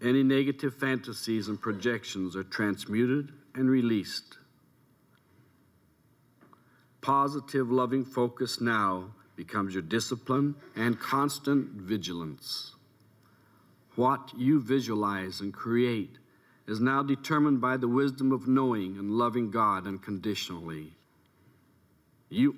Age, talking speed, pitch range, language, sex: 60-79, 100 wpm, 100-130 Hz, English, male